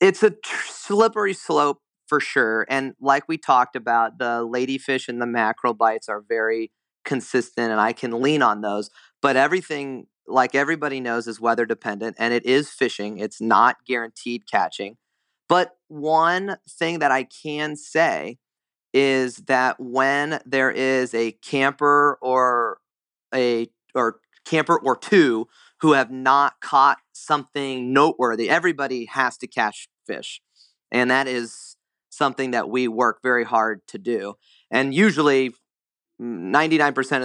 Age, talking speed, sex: 30-49, 140 wpm, male